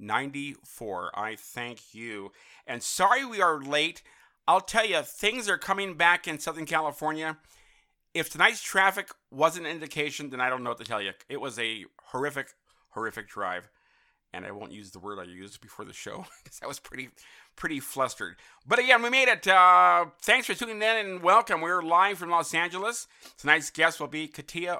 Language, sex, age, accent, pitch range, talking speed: English, male, 50-69, American, 130-175 Hz, 190 wpm